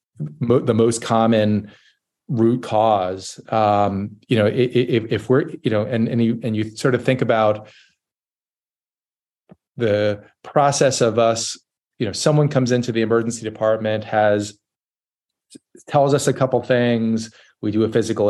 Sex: male